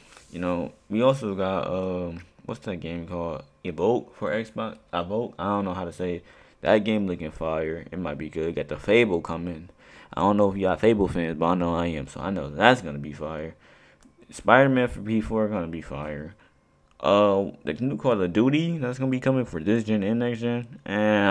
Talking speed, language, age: 220 wpm, English, 20-39